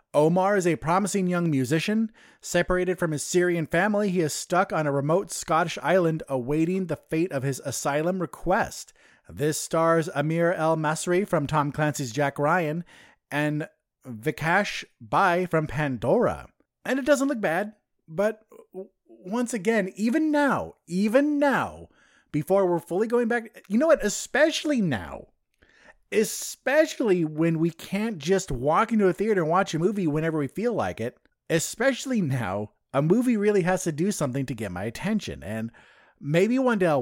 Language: English